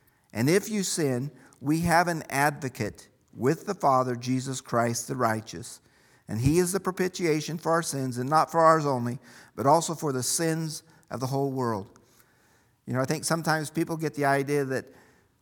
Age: 50-69